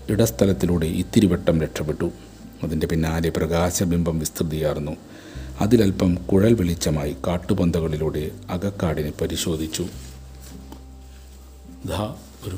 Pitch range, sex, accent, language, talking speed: 80-95 Hz, male, native, Malayalam, 70 wpm